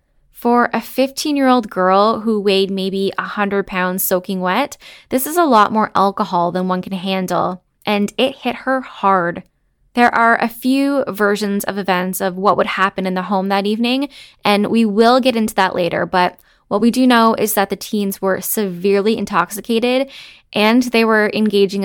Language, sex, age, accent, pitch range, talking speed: English, female, 10-29, American, 190-230 Hz, 180 wpm